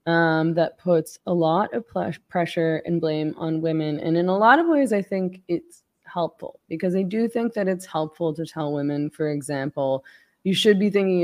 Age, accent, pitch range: 20-39, American, 155-185 Hz